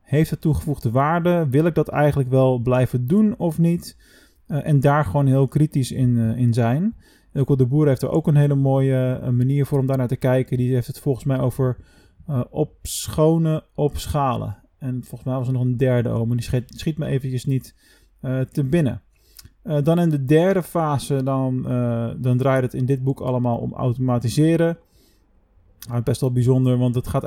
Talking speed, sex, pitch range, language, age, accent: 205 wpm, male, 130-150 Hz, Dutch, 20-39, Dutch